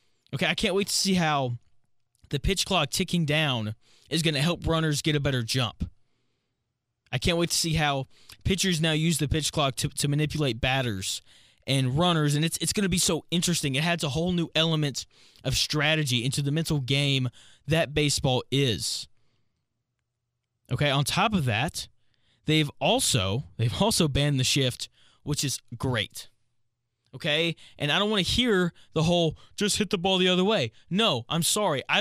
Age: 20-39